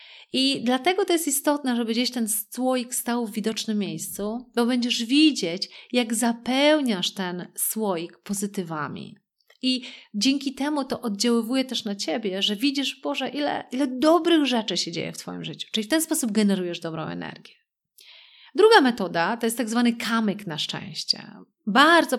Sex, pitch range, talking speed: female, 200-270 Hz, 155 wpm